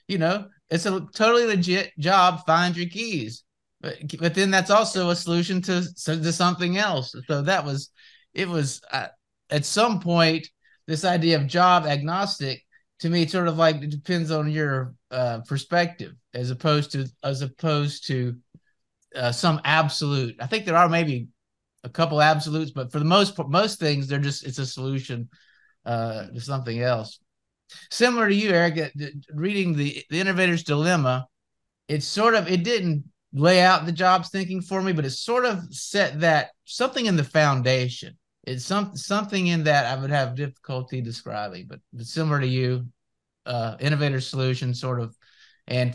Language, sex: English, male